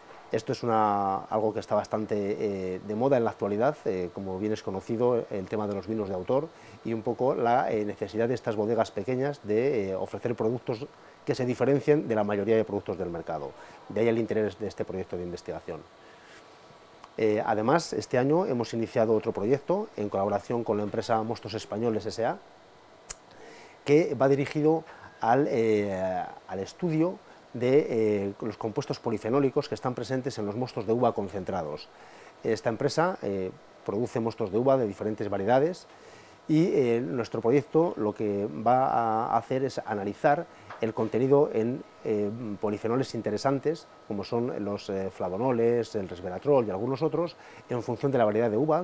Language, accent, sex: Spanish, Spanish, male